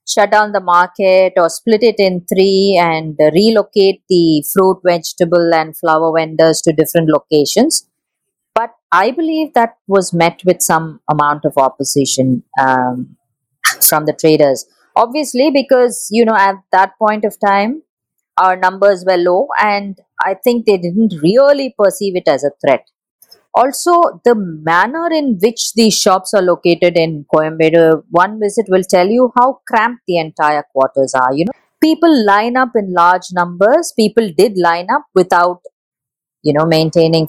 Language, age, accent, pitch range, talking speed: English, 30-49, Indian, 155-215 Hz, 155 wpm